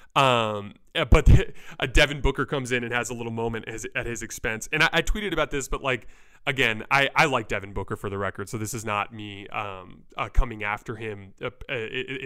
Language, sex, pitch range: English, male, 110-135 Hz